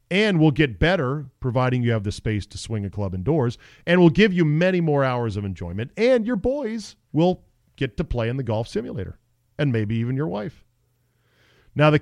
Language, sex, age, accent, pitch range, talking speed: English, male, 40-59, American, 110-145 Hz, 205 wpm